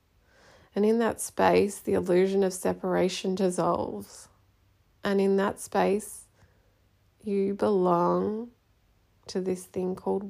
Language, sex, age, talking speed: English, female, 20-39, 110 wpm